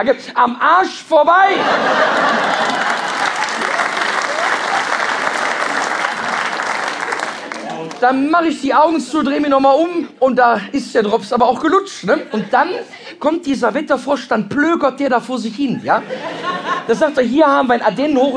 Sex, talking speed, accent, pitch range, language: male, 145 wpm, German, 240-300 Hz, German